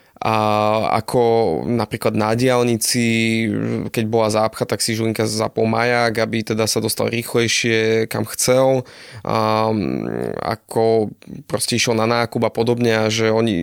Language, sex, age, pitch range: Slovak, male, 20-39, 110-120 Hz